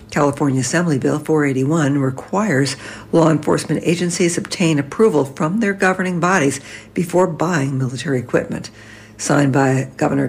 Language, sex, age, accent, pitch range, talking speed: English, female, 60-79, American, 130-180 Hz, 120 wpm